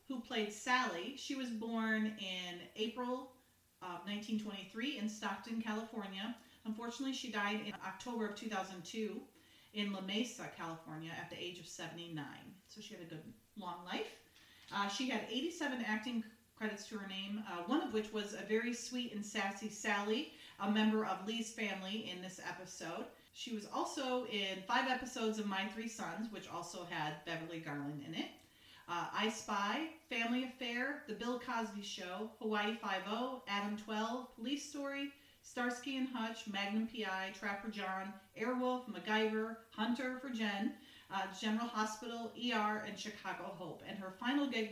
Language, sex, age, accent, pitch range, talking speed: English, female, 40-59, American, 195-240 Hz, 160 wpm